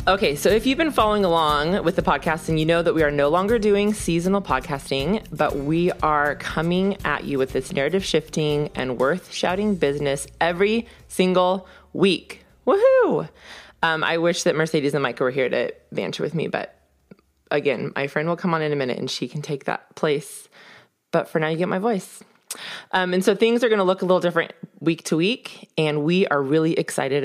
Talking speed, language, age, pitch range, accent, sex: 205 wpm, English, 20-39, 150-195 Hz, American, female